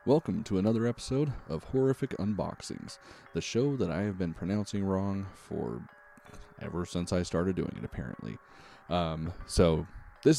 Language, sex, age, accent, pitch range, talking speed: English, male, 30-49, American, 80-105 Hz, 150 wpm